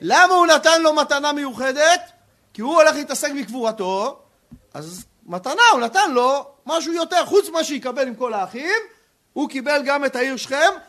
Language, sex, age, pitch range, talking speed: Hebrew, male, 40-59, 245-310 Hz, 165 wpm